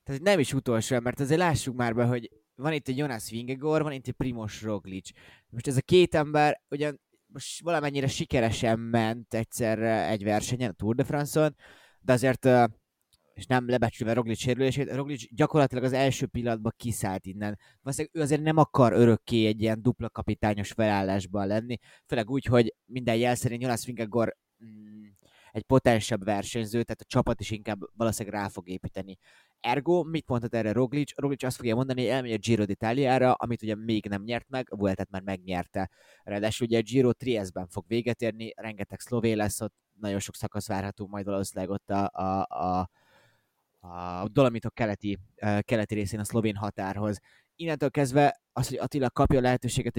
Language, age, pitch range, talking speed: Hungarian, 20-39, 105-130 Hz, 170 wpm